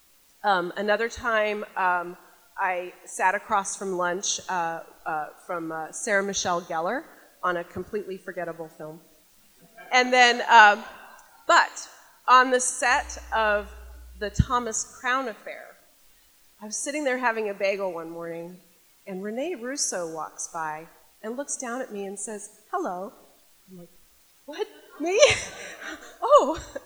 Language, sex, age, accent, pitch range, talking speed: English, female, 30-49, American, 180-250 Hz, 135 wpm